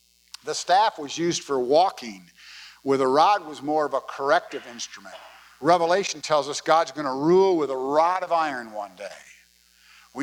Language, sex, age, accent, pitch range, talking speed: English, male, 50-69, American, 130-175 Hz, 175 wpm